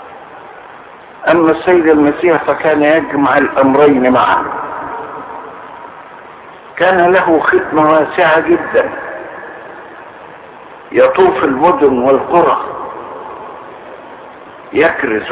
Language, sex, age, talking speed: Arabic, male, 60-79, 65 wpm